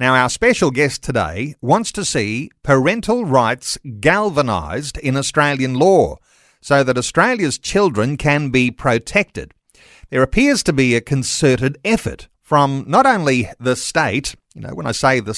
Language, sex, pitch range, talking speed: English, male, 125-160 Hz, 150 wpm